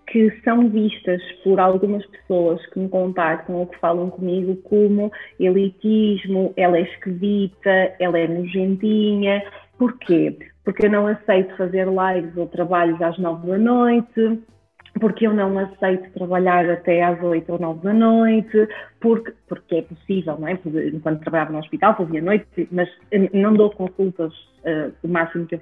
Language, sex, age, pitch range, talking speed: Portuguese, female, 30-49, 190-240 Hz, 155 wpm